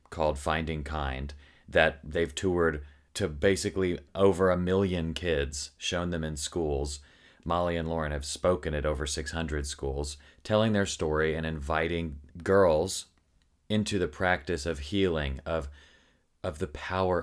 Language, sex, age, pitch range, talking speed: English, male, 30-49, 75-85 Hz, 140 wpm